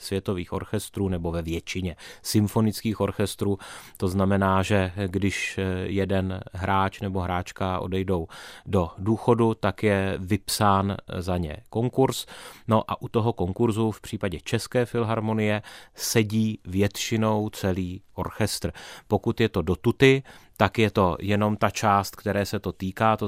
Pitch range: 95-110 Hz